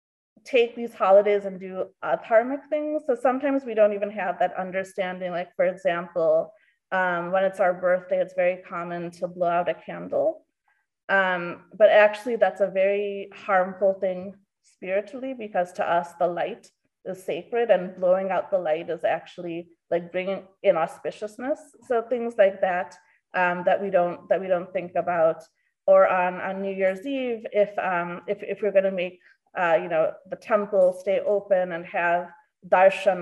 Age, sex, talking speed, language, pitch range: 30-49, female, 170 wpm, English, 180-235 Hz